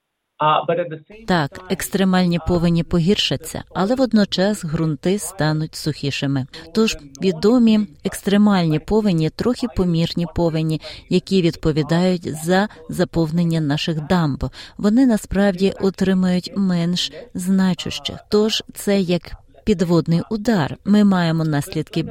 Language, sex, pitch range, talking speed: Ukrainian, female, 155-195 Hz, 95 wpm